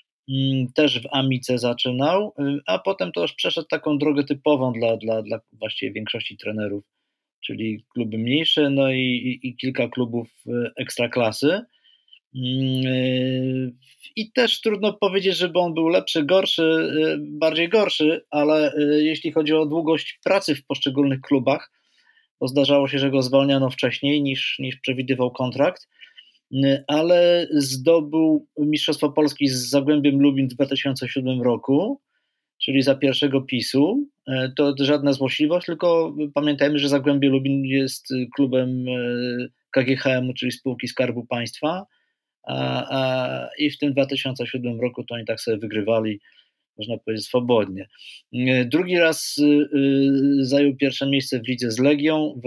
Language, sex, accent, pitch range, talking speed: Polish, male, native, 125-150 Hz, 130 wpm